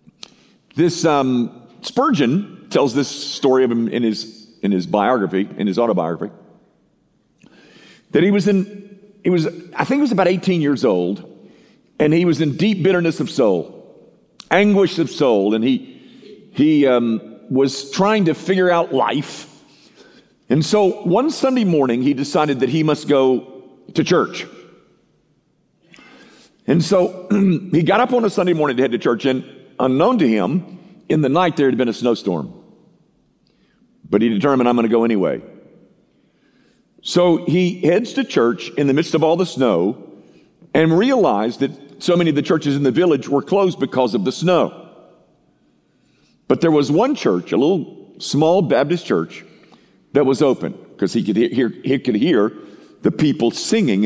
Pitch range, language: 130-190 Hz, English